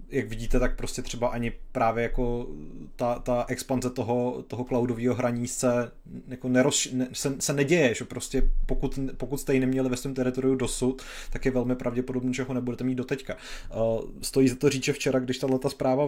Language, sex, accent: Czech, male, native